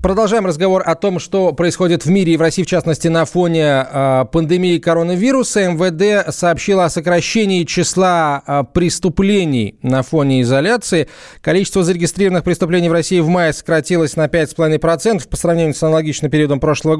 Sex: male